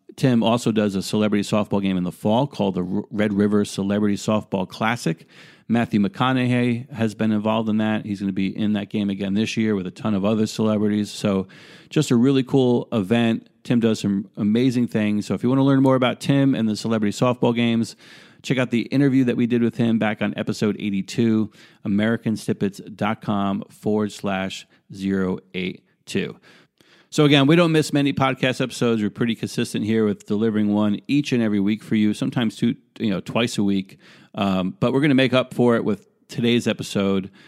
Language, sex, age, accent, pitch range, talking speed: English, male, 40-59, American, 105-125 Hz, 195 wpm